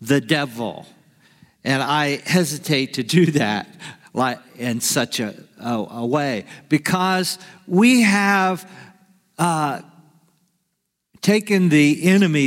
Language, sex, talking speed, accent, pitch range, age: English, male, 100 wpm, American, 135-185 Hz, 50-69